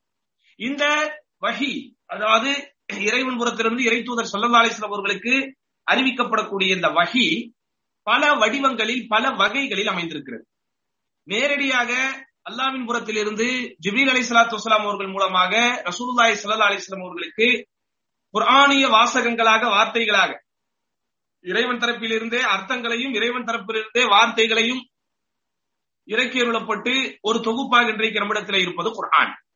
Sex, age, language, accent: male, 40-59, English, Indian